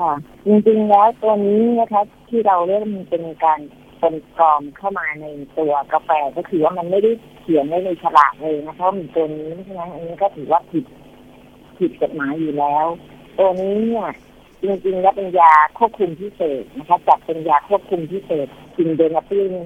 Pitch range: 155-200 Hz